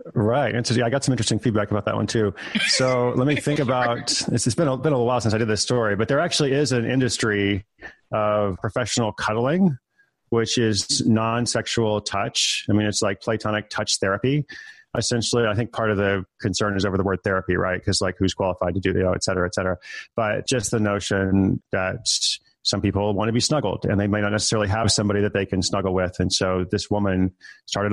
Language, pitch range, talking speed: English, 95-115 Hz, 225 wpm